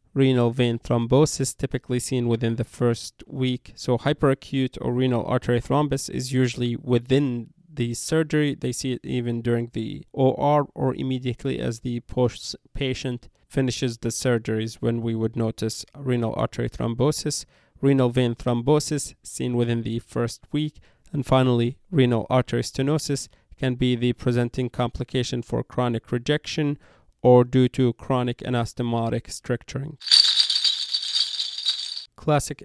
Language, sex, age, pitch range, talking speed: English, male, 20-39, 120-135 Hz, 130 wpm